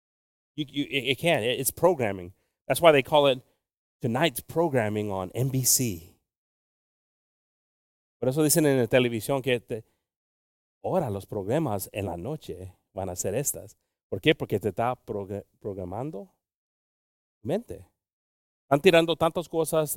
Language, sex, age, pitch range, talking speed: English, male, 30-49, 100-140 Hz, 135 wpm